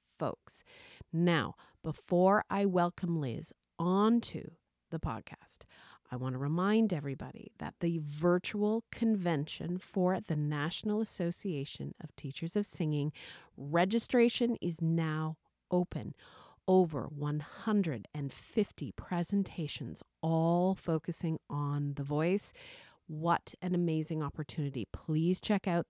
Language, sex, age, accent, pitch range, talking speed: English, female, 40-59, American, 155-200 Hz, 105 wpm